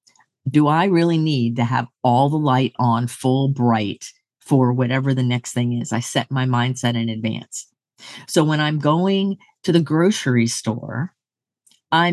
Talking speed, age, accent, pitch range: 165 wpm, 50-69, American, 125-160 Hz